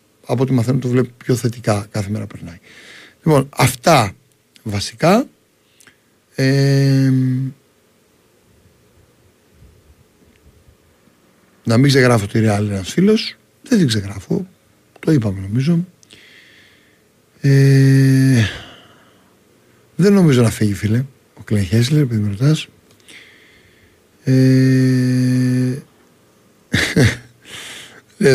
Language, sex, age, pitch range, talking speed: Greek, male, 60-79, 105-135 Hz, 85 wpm